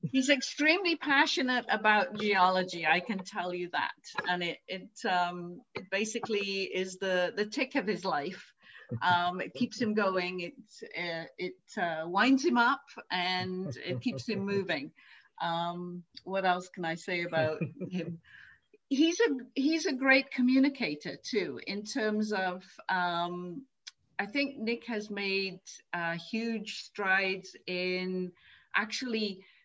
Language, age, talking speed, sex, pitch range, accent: English, 50-69, 140 wpm, female, 180-235 Hz, British